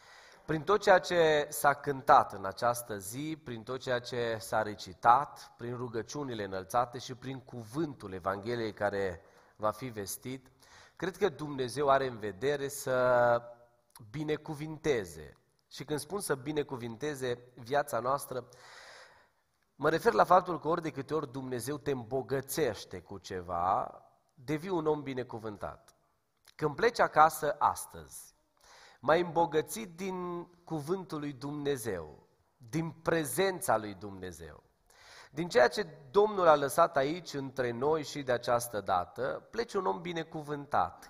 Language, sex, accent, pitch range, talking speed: Romanian, male, native, 115-155 Hz, 130 wpm